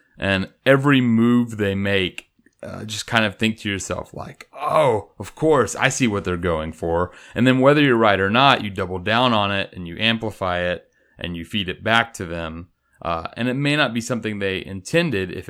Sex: male